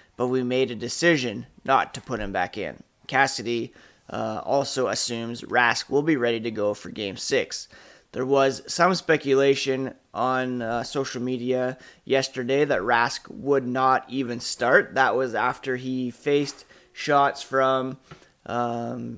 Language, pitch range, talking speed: English, 125-145 Hz, 145 wpm